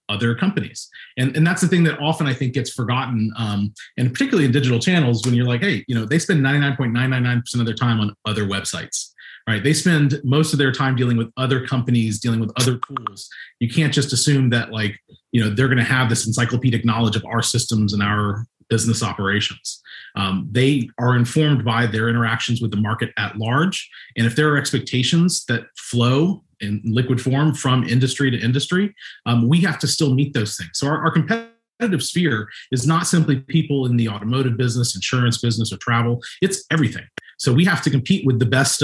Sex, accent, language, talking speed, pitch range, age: male, American, English, 205 wpm, 115-140 Hz, 30-49